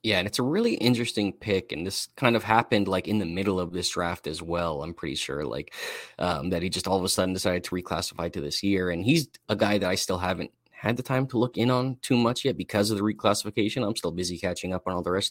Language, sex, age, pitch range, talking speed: English, male, 20-39, 90-115 Hz, 275 wpm